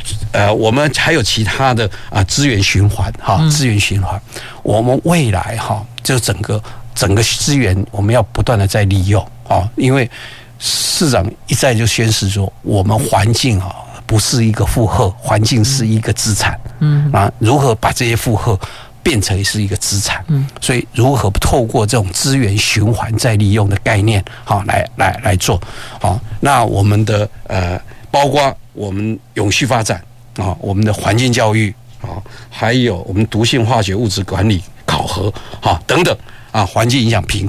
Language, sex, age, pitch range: Chinese, male, 50-69, 105-125 Hz